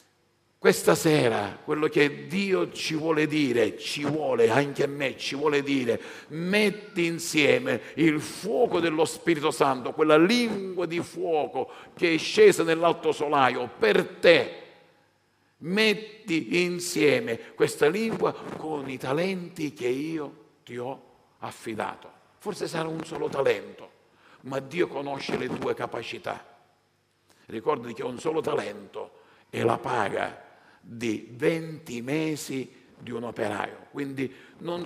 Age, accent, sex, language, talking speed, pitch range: 50-69, native, male, Italian, 125 wpm, 150-200 Hz